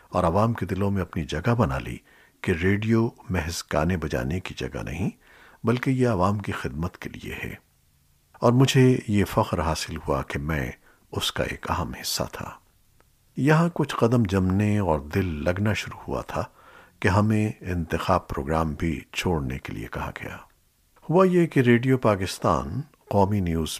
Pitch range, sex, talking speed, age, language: 85-115 Hz, male, 165 wpm, 50-69, Urdu